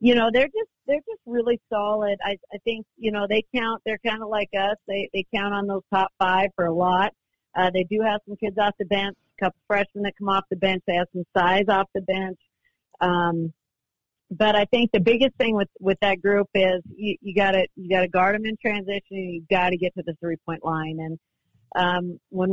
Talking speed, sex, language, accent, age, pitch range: 230 wpm, female, English, American, 50-69, 180-210 Hz